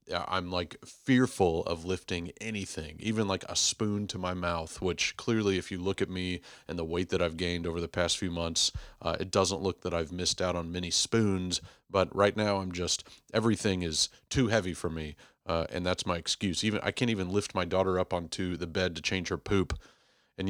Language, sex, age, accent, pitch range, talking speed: English, male, 30-49, American, 90-110 Hz, 215 wpm